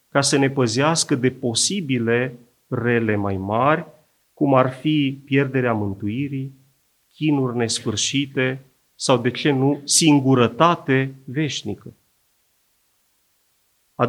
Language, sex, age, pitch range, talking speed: Romanian, male, 30-49, 120-155 Hz, 100 wpm